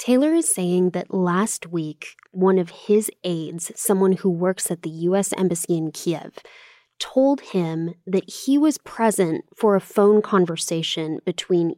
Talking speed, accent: 155 wpm, American